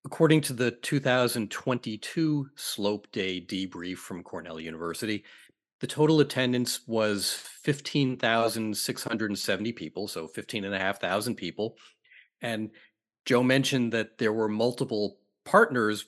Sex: male